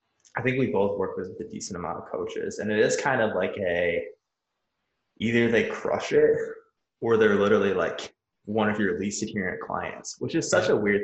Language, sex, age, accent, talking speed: English, male, 20-39, American, 200 wpm